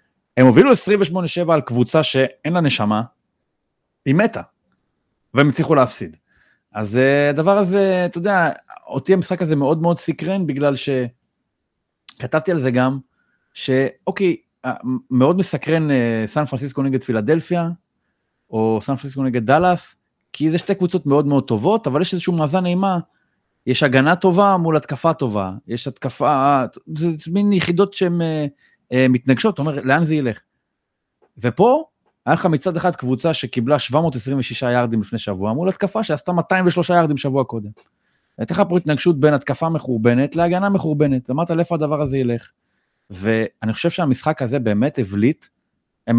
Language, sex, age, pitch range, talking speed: Hebrew, male, 30-49, 130-175 Hz, 140 wpm